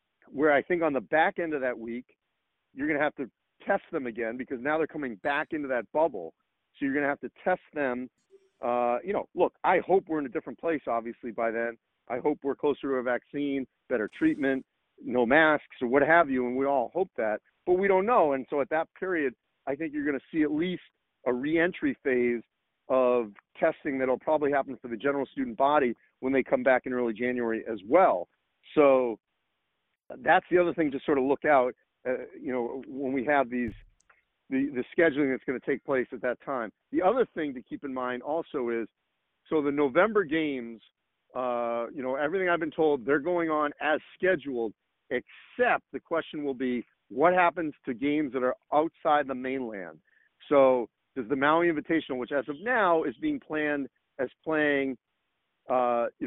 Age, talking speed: 40-59, 205 wpm